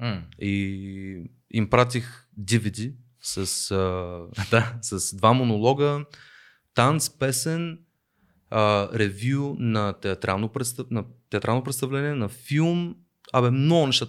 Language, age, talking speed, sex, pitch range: Bulgarian, 20-39, 85 wpm, male, 100-125 Hz